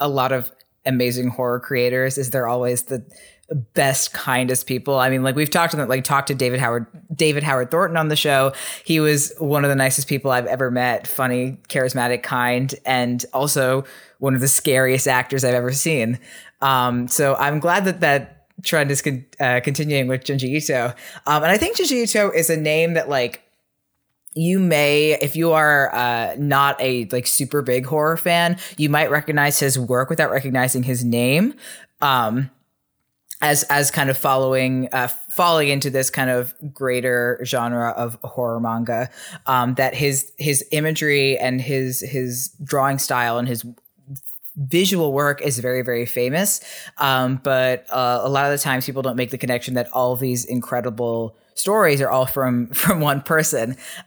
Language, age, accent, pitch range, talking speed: English, 20-39, American, 125-145 Hz, 180 wpm